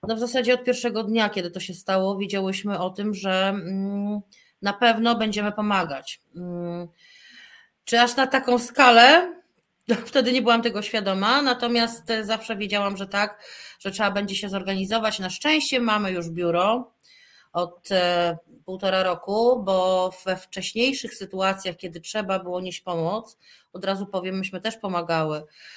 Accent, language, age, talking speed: native, Polish, 30-49, 140 wpm